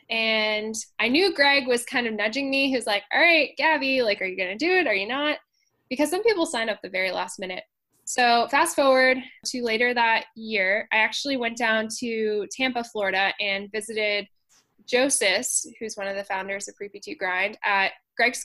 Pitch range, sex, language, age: 215-260 Hz, female, English, 10-29